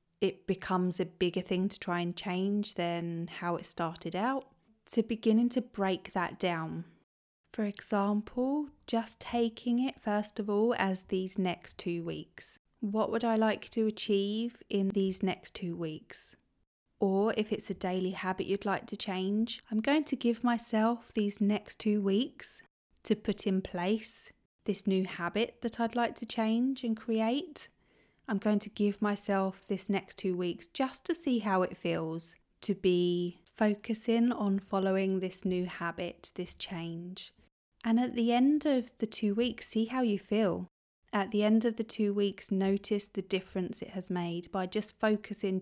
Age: 20-39